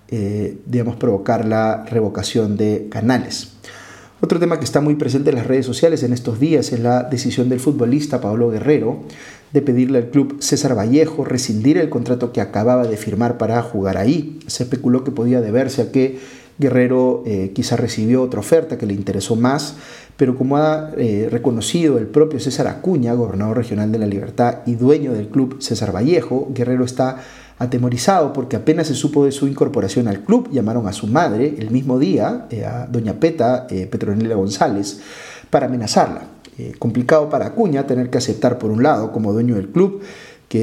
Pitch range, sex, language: 110-140 Hz, male, Spanish